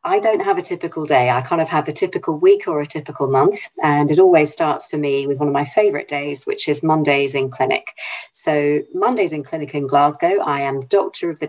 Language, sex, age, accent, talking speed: English, female, 40-59, British, 235 wpm